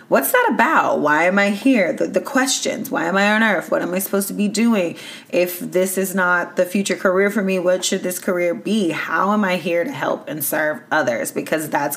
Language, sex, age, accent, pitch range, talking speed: English, female, 30-49, American, 170-215 Hz, 235 wpm